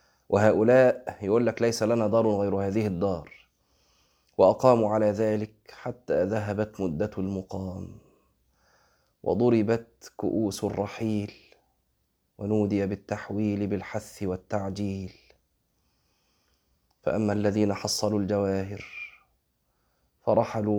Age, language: 20-39, Arabic